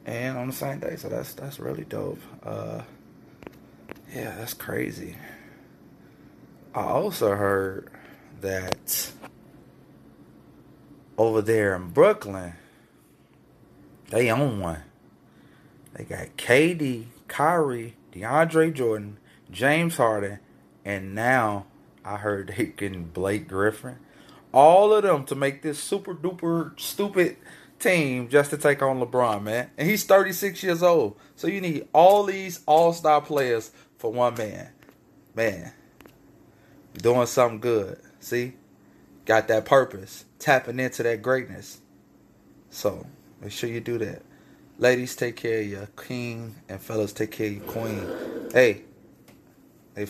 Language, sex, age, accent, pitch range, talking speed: English, male, 30-49, American, 100-140 Hz, 125 wpm